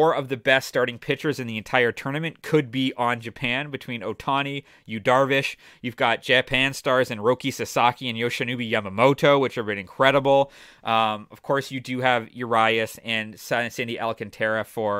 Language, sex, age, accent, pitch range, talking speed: English, male, 30-49, American, 115-140 Hz, 170 wpm